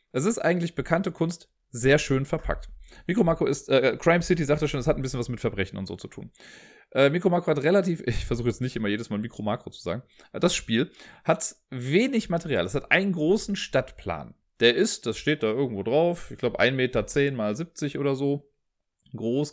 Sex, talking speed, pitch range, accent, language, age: male, 210 wpm, 115-150 Hz, German, German, 30-49